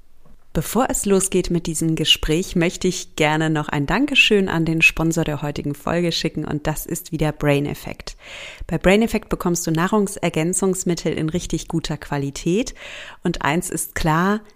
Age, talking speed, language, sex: 40-59, 160 wpm, German, female